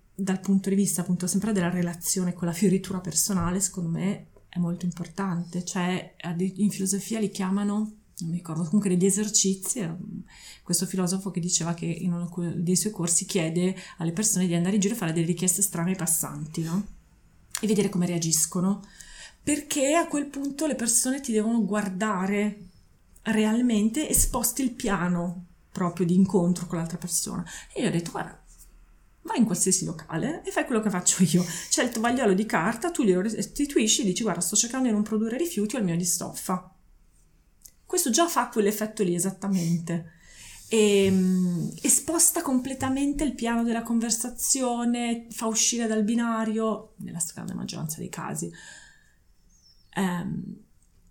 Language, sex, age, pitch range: Italian, female, 30-49, 175-220 Hz